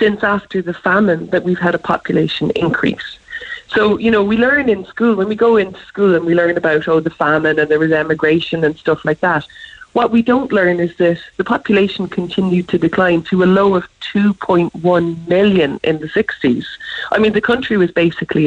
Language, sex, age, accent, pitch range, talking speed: English, female, 30-49, Irish, 160-205 Hz, 205 wpm